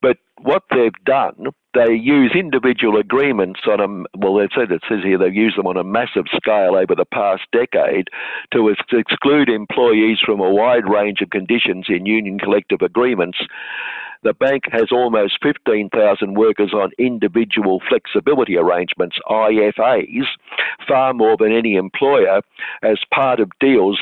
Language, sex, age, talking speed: English, male, 60-79, 145 wpm